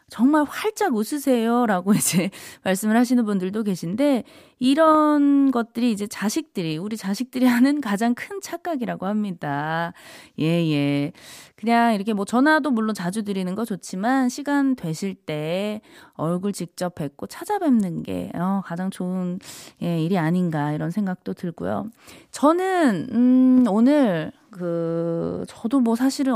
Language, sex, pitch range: Korean, female, 170-245 Hz